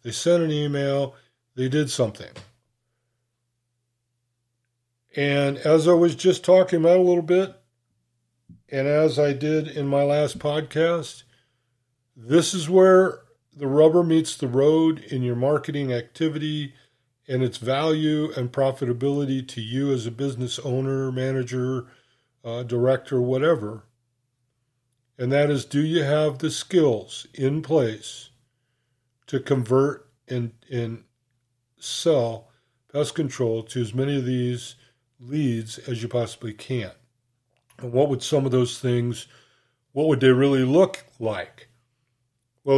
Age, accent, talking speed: 50-69, American, 130 wpm